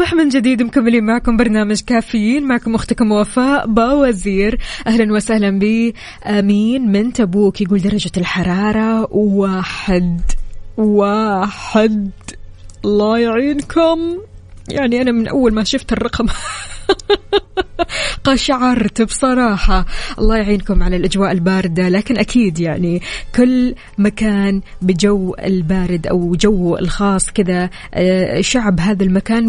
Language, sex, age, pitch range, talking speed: Arabic, female, 20-39, 190-235 Hz, 105 wpm